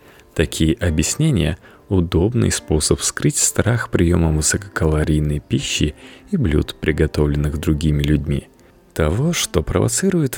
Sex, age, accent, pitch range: male, 30-49, native, 80-120 Hz